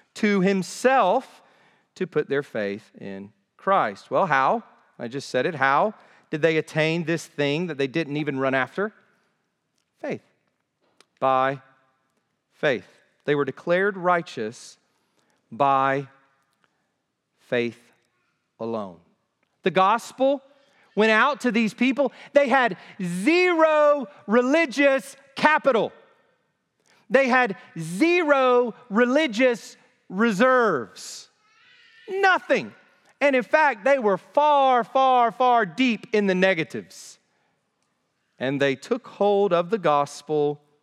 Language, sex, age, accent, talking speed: English, male, 40-59, American, 105 wpm